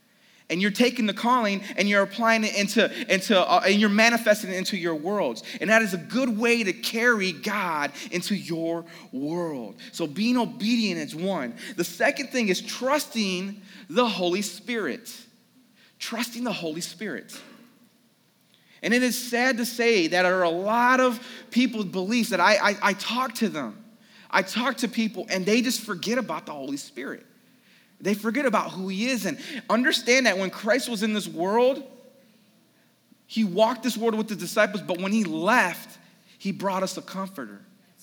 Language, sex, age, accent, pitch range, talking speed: English, male, 30-49, American, 190-240 Hz, 175 wpm